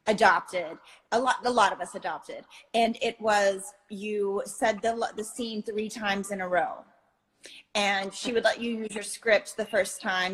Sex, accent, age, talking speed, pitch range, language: female, American, 30-49, 185 wpm, 195-230 Hz, Italian